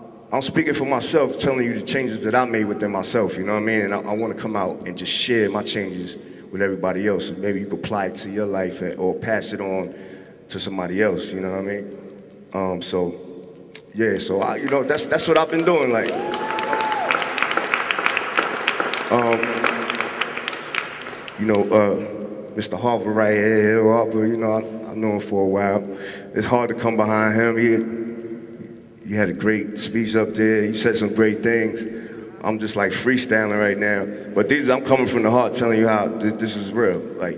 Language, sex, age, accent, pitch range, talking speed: English, male, 30-49, American, 100-115 Hz, 205 wpm